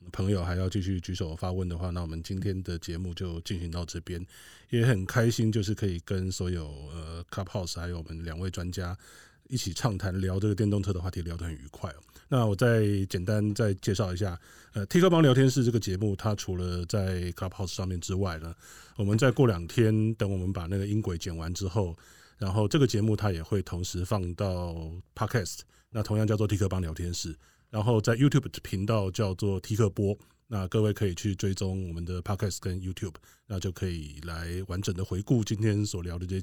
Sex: male